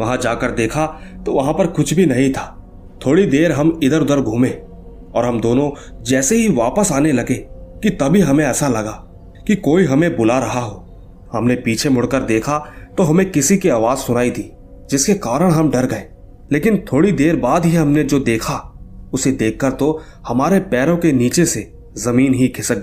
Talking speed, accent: 185 wpm, native